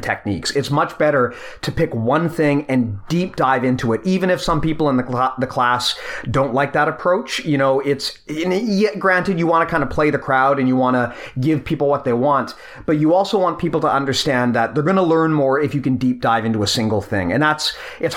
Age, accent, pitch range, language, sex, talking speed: 30-49, American, 120-155 Hz, English, male, 245 wpm